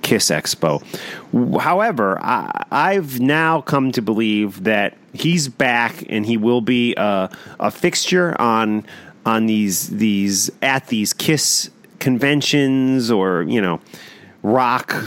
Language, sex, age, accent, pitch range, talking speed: English, male, 30-49, American, 105-140 Hz, 125 wpm